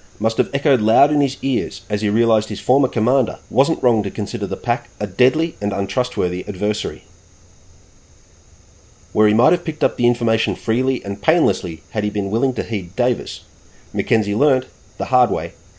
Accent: Australian